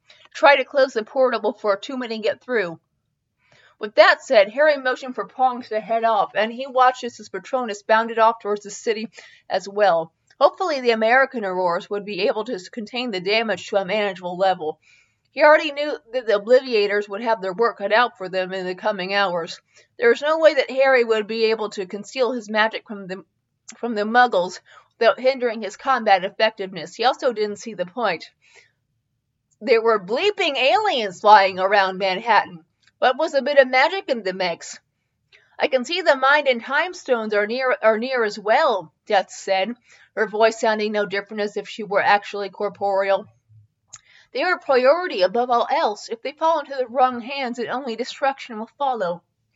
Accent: American